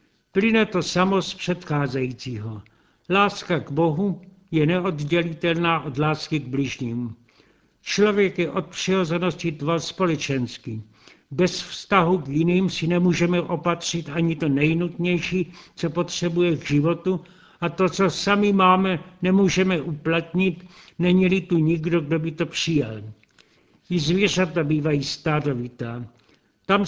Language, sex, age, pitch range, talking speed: Czech, male, 60-79, 150-180 Hz, 120 wpm